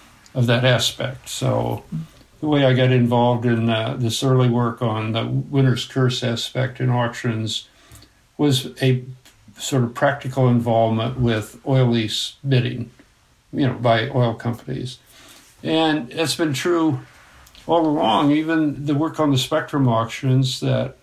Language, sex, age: English, male, 60-79